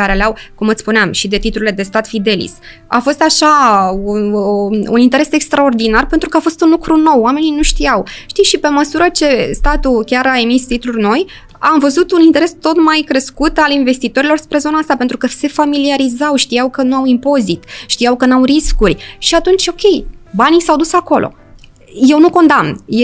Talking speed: 195 wpm